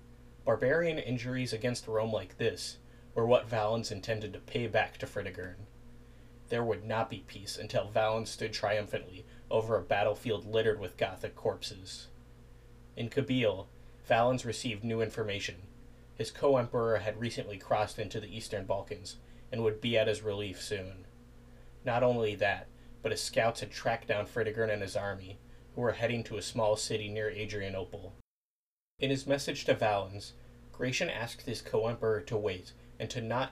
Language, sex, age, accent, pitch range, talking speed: English, male, 30-49, American, 105-120 Hz, 160 wpm